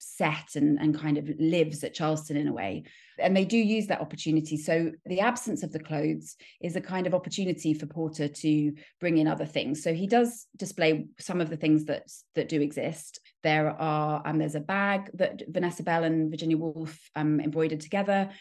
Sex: female